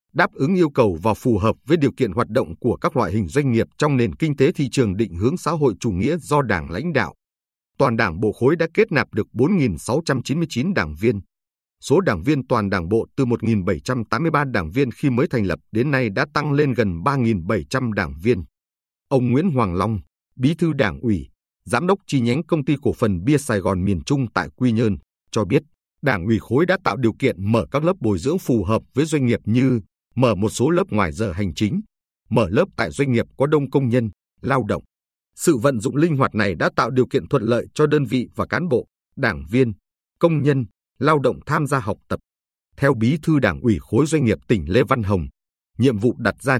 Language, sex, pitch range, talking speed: Vietnamese, male, 100-140 Hz, 230 wpm